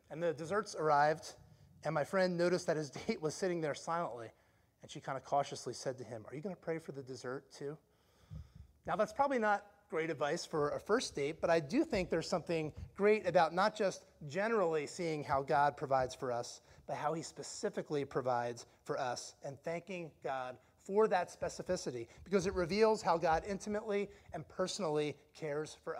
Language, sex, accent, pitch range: English, male, American, 145-210 Hz